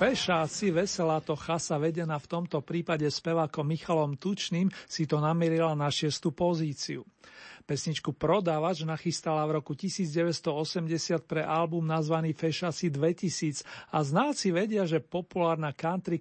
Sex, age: male, 40-59